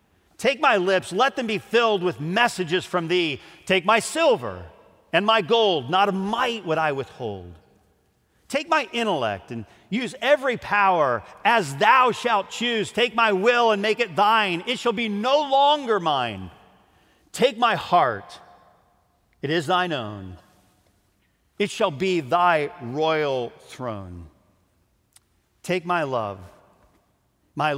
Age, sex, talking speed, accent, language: 40-59, male, 140 wpm, American, English